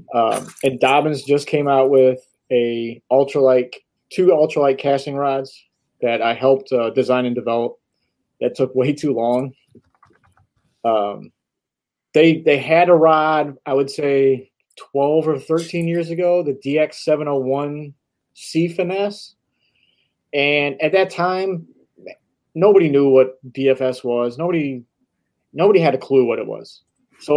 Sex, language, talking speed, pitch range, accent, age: male, English, 140 wpm, 125-145 Hz, American, 30-49